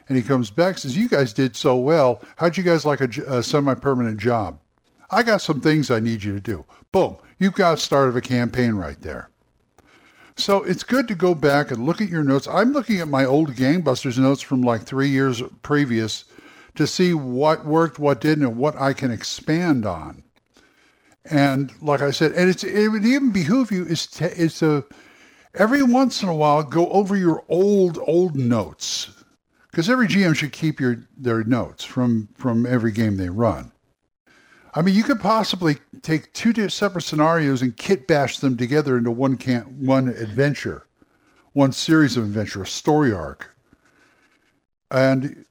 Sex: male